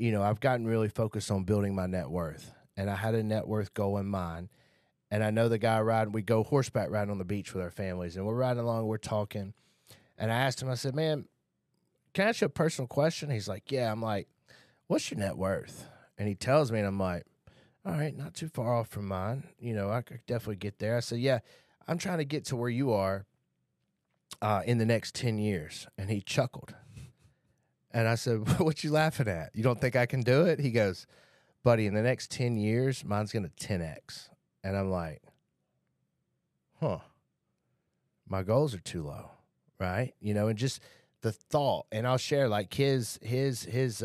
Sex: male